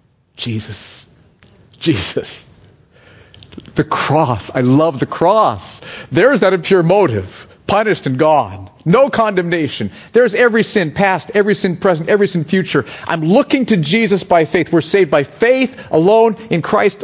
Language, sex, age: English, male, 40-59